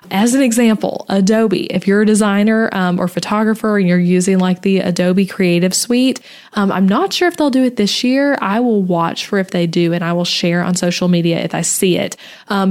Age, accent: 20-39, American